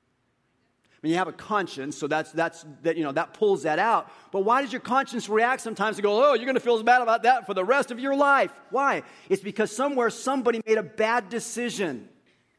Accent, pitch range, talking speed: American, 140-220 Hz, 225 wpm